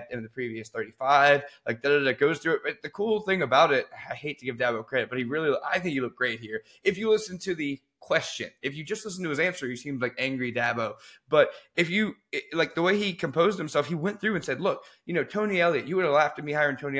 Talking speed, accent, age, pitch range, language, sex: 270 wpm, American, 20-39, 130-190 Hz, English, male